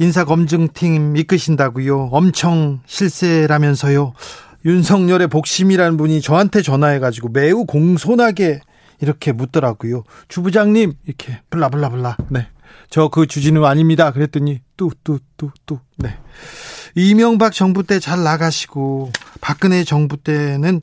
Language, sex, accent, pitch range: Korean, male, native, 145-190 Hz